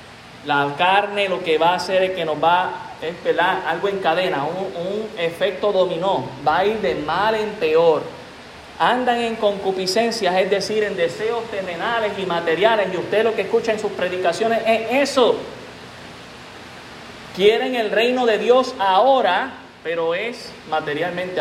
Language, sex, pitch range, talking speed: Spanish, male, 180-225 Hz, 155 wpm